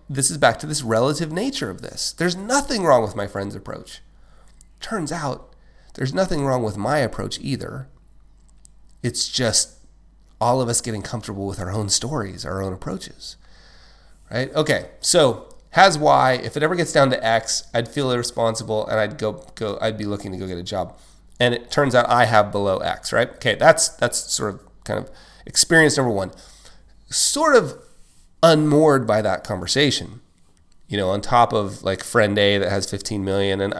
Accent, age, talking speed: American, 30-49, 185 wpm